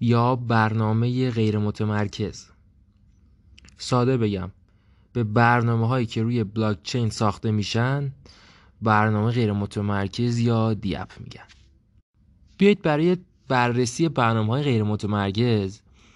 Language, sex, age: English, male, 20-39